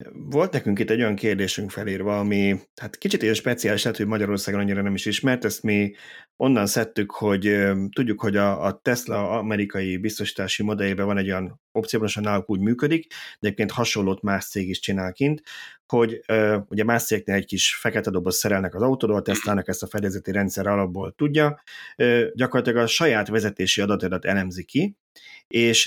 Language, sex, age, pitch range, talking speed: Hungarian, male, 30-49, 100-115 Hz, 170 wpm